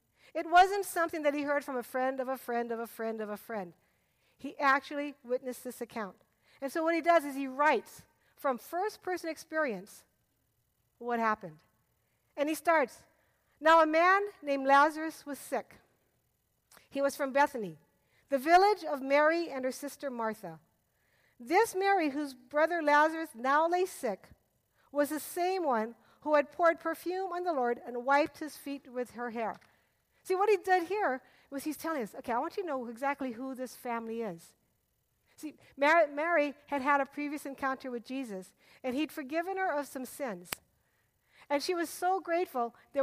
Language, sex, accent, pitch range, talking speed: English, female, American, 255-335 Hz, 175 wpm